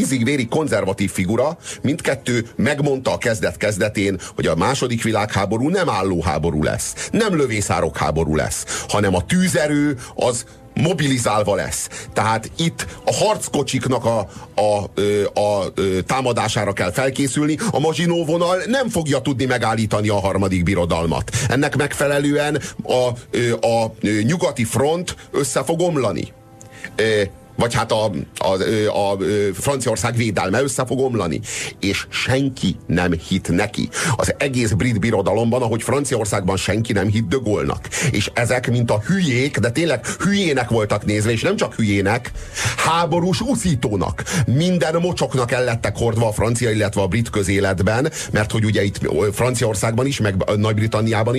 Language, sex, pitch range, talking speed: Hungarian, male, 105-135 Hz, 135 wpm